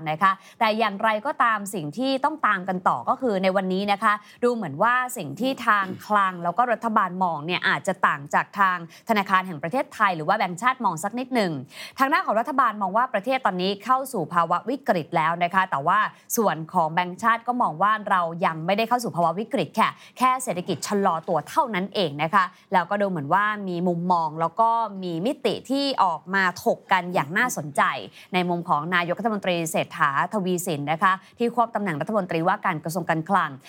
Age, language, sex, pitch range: 20-39, Thai, female, 175-230 Hz